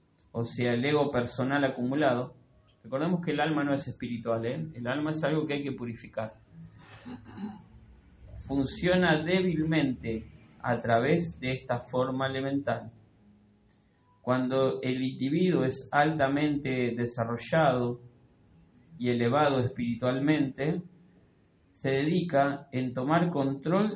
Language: Spanish